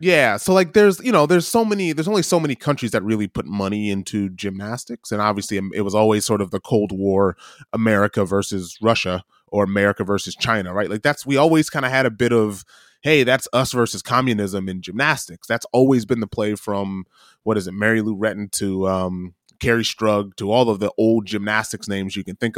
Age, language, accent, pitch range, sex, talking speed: 20-39, English, American, 100-130 Hz, male, 215 wpm